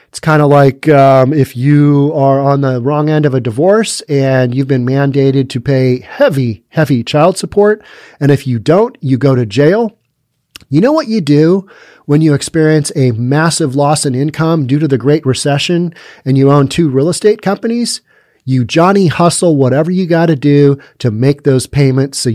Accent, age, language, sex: American, 40-59, English, male